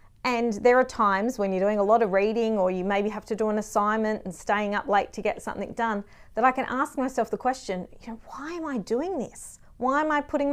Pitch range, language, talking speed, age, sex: 200-235 Hz, English, 255 wpm, 30-49, female